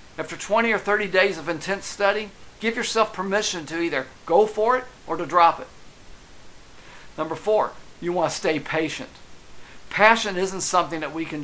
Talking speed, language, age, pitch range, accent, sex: 175 wpm, English, 50-69, 150-200 Hz, American, male